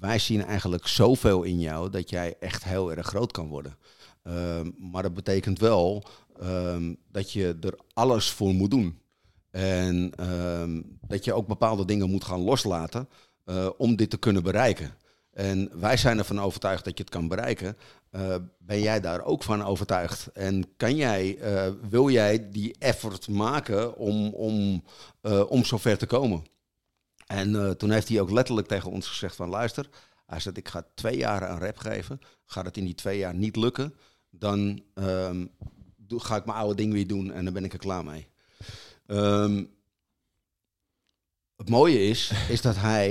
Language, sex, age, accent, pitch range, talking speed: Dutch, male, 50-69, Dutch, 90-105 Hz, 180 wpm